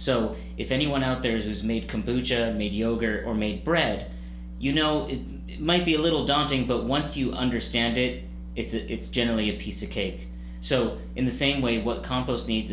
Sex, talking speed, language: male, 200 wpm, English